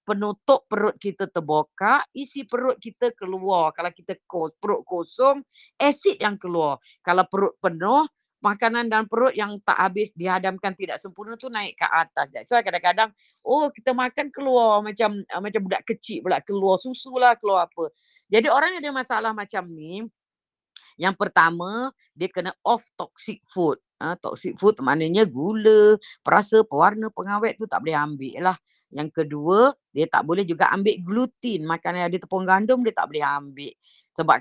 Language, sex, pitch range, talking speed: Indonesian, female, 165-220 Hz, 160 wpm